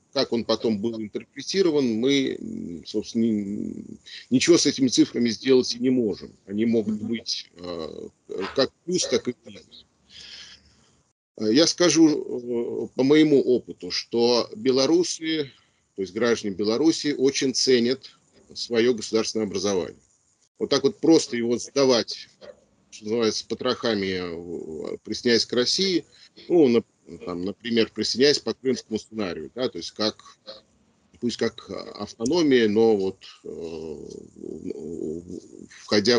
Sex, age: male, 40-59